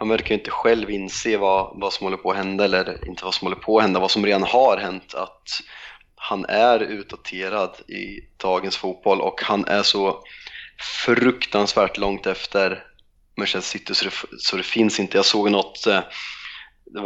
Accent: native